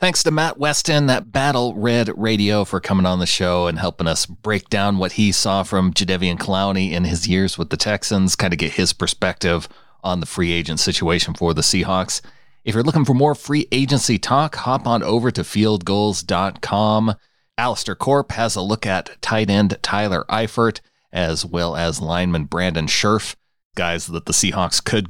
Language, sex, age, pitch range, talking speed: English, male, 30-49, 90-115 Hz, 185 wpm